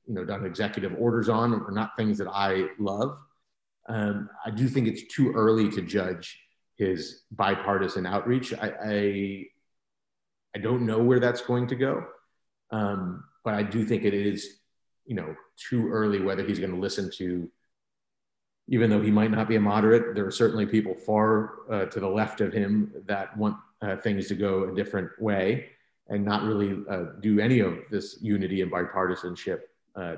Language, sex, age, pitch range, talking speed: English, male, 40-59, 95-110 Hz, 180 wpm